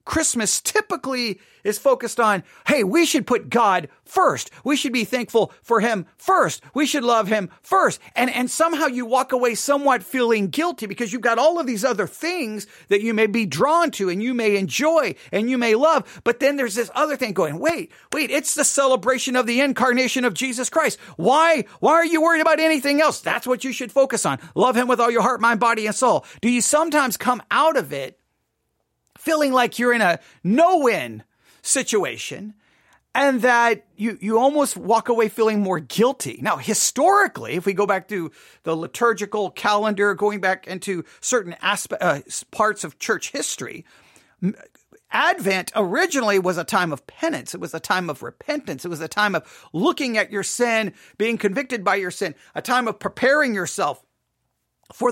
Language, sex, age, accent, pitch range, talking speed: English, male, 40-59, American, 205-265 Hz, 190 wpm